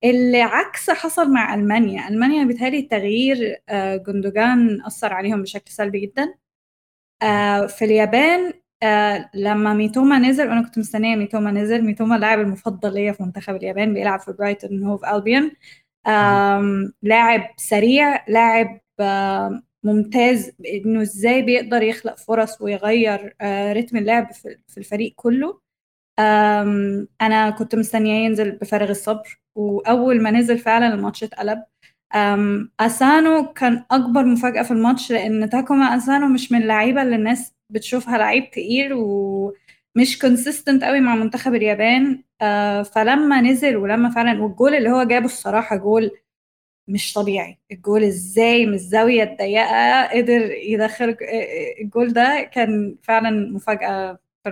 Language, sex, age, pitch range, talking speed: Arabic, female, 10-29, 205-240 Hz, 120 wpm